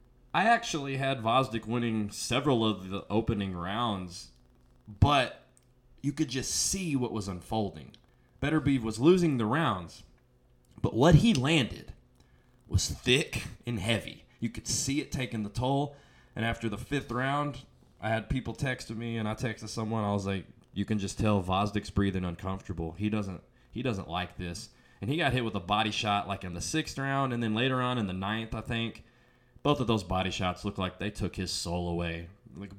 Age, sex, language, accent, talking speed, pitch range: 20-39, male, English, American, 190 wpm, 100-145 Hz